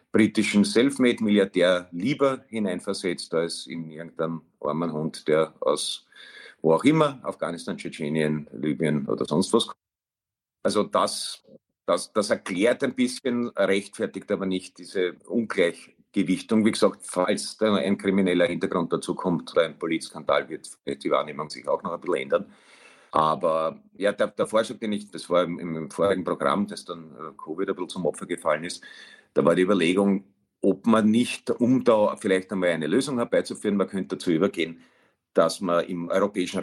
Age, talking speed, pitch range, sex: 50-69, 155 wpm, 85-105 Hz, male